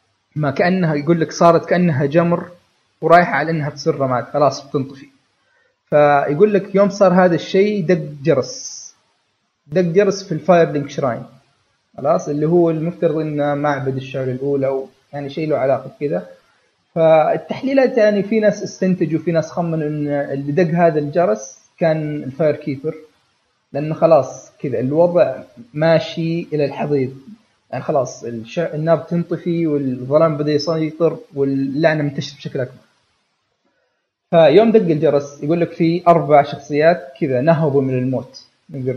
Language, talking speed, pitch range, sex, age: Arabic, 135 wpm, 140-170 Hz, male, 30-49